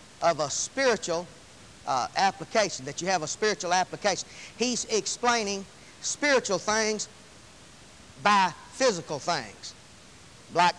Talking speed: 105 wpm